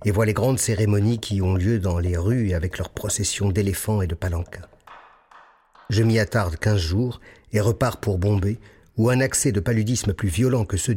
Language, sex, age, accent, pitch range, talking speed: French, male, 50-69, French, 90-120 Hz, 195 wpm